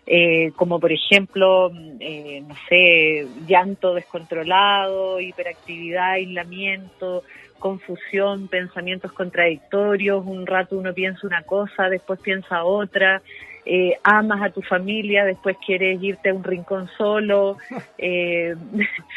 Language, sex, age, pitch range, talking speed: Spanish, female, 30-49, 180-210 Hz, 115 wpm